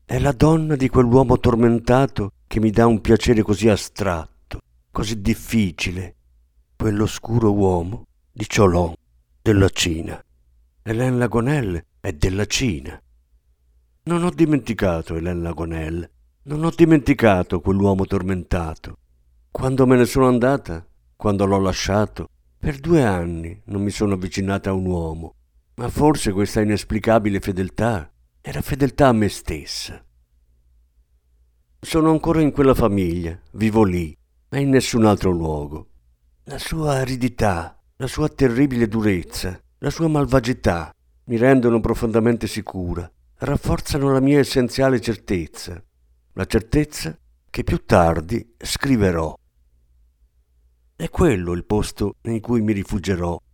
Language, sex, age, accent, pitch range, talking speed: Italian, male, 50-69, native, 80-120 Hz, 120 wpm